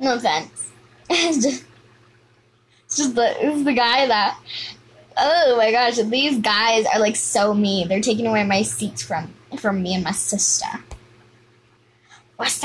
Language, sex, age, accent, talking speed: English, female, 10-29, American, 150 wpm